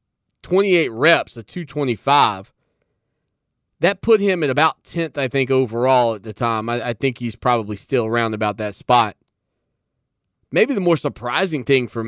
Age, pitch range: 30-49, 110-135 Hz